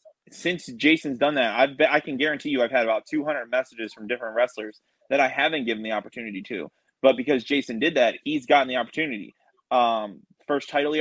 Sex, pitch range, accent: male, 120-150 Hz, American